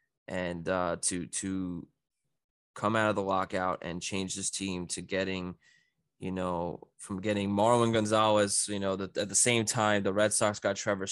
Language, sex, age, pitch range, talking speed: English, male, 20-39, 95-110 Hz, 180 wpm